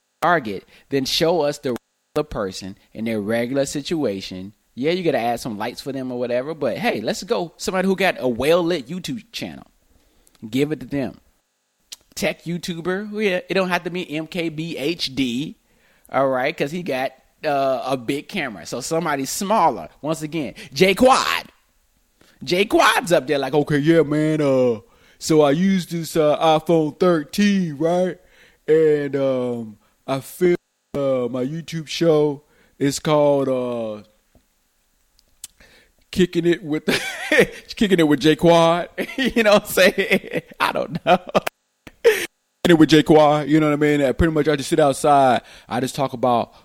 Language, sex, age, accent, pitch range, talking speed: English, male, 30-49, American, 130-175 Hz, 160 wpm